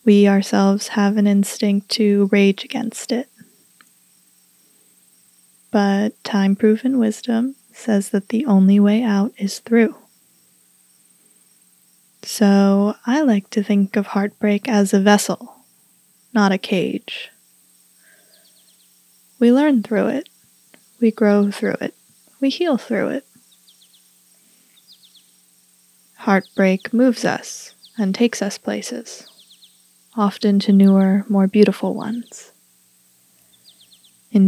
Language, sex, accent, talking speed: English, female, American, 105 wpm